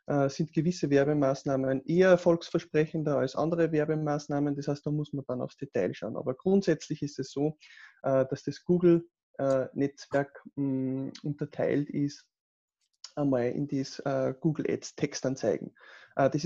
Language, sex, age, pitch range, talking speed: German, male, 20-39, 135-165 Hz, 115 wpm